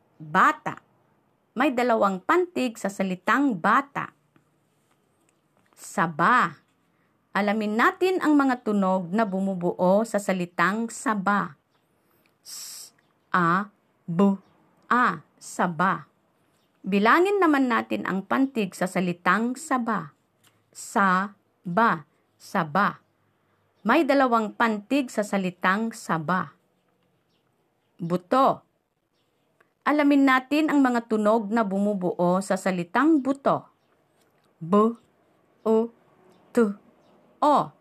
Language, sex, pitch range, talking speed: Filipino, female, 185-255 Hz, 80 wpm